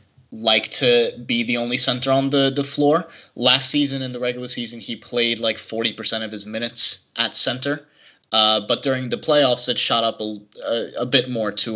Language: English